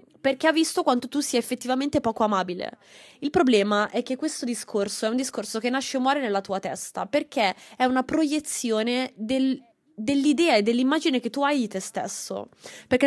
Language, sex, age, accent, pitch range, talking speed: Italian, female, 20-39, native, 200-265 Hz, 185 wpm